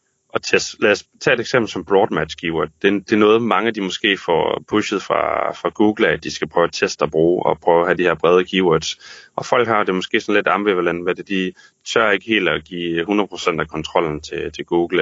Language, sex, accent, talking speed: Danish, male, native, 245 wpm